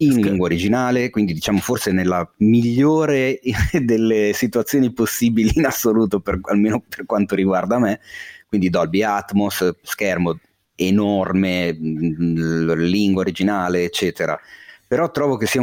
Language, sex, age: Italian, male, 30-49